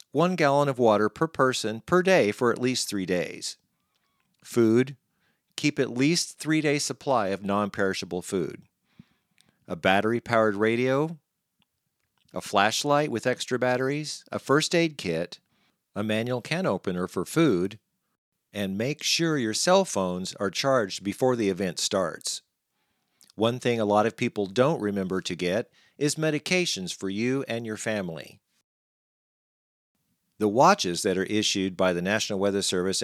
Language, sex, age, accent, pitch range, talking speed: English, male, 50-69, American, 95-135 Hz, 145 wpm